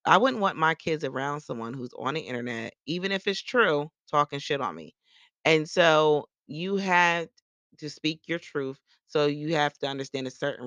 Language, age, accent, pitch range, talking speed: English, 30-49, American, 120-150 Hz, 190 wpm